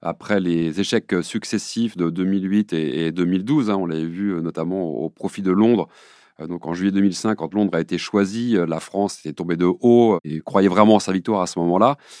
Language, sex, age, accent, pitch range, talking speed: French, male, 30-49, French, 90-115 Hz, 200 wpm